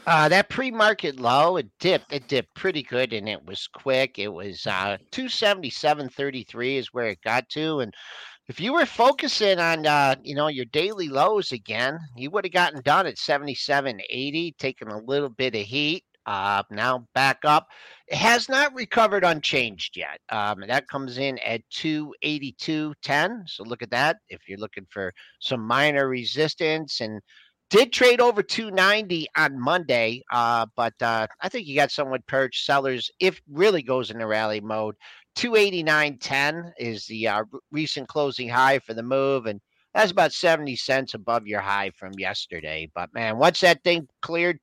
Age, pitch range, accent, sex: 50-69, 120-175 Hz, American, male